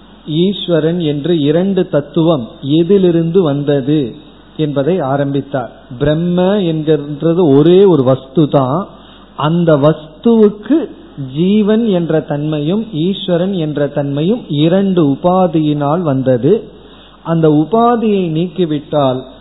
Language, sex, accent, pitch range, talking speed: Tamil, male, native, 140-180 Hz, 75 wpm